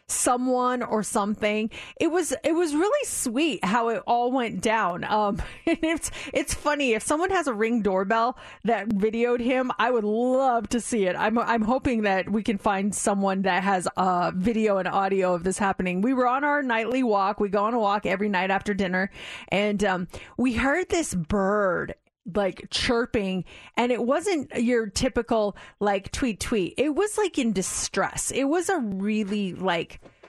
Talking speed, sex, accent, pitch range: 180 wpm, female, American, 200-265 Hz